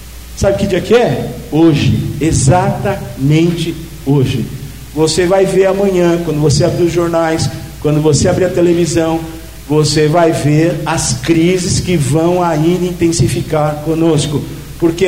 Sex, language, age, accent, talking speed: male, Portuguese, 50-69, Brazilian, 130 wpm